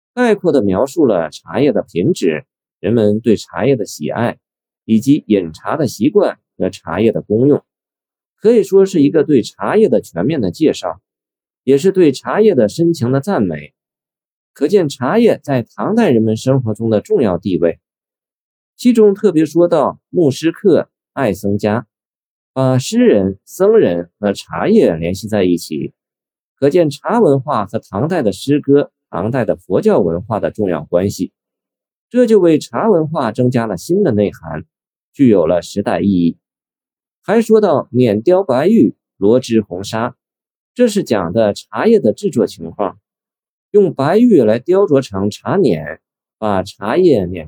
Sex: male